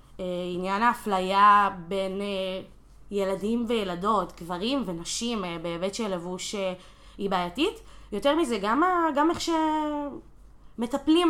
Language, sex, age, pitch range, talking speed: Hebrew, female, 20-39, 185-235 Hz, 120 wpm